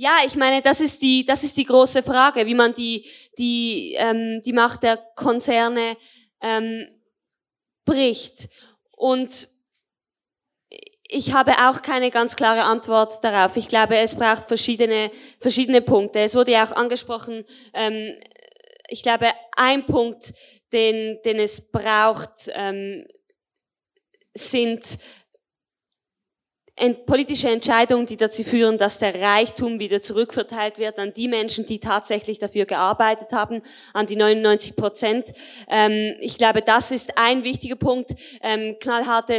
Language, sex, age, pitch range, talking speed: German, female, 20-39, 220-255 Hz, 130 wpm